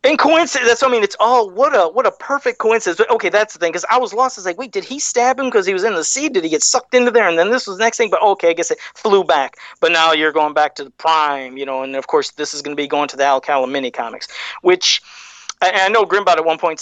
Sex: male